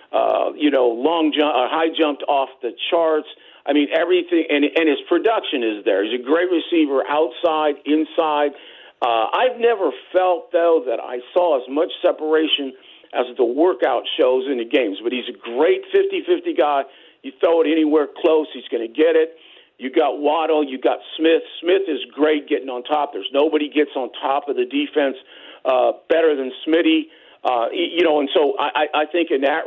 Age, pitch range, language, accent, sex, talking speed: 50-69, 140-180 Hz, English, American, male, 190 wpm